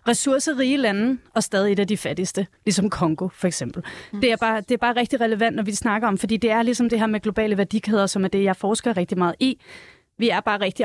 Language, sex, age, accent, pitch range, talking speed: Danish, female, 30-49, native, 200-235 Hz, 240 wpm